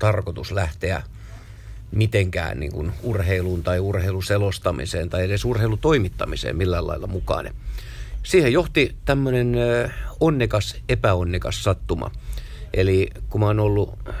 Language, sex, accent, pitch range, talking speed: Finnish, male, native, 90-110 Hz, 105 wpm